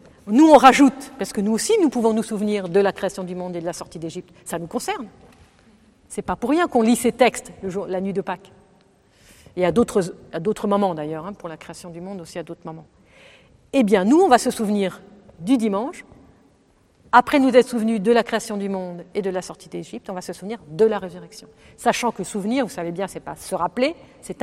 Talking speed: 240 wpm